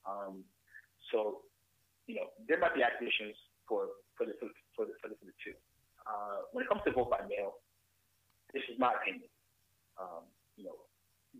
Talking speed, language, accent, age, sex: 175 wpm, English, American, 30-49, male